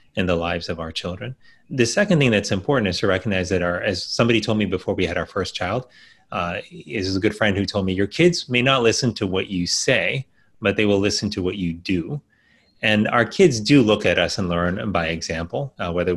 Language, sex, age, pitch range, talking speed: English, male, 30-49, 90-110 Hz, 240 wpm